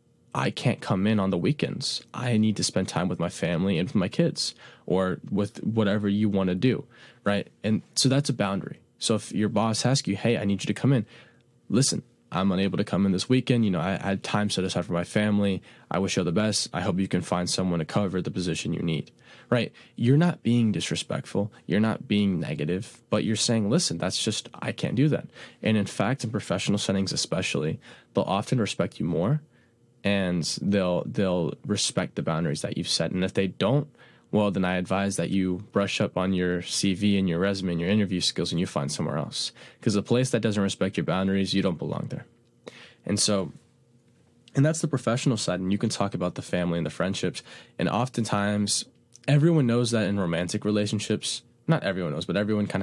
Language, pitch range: English, 95-120 Hz